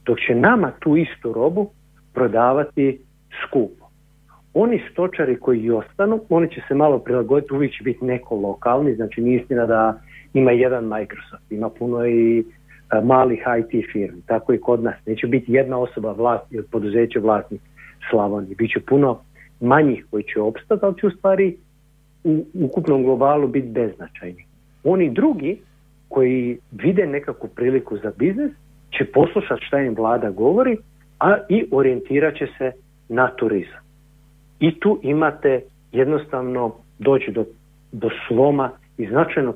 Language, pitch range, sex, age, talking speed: Croatian, 115-145 Hz, male, 50-69, 140 wpm